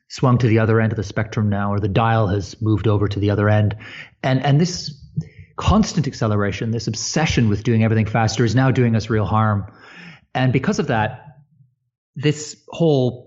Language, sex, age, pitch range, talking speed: English, male, 30-49, 110-140 Hz, 190 wpm